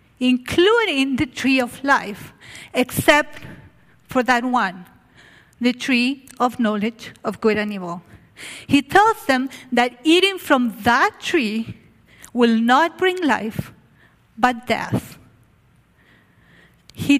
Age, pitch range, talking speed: 50-69, 225-285 Hz, 110 wpm